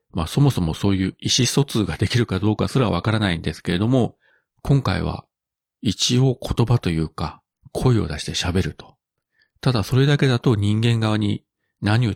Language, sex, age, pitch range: Japanese, male, 40-59, 90-120 Hz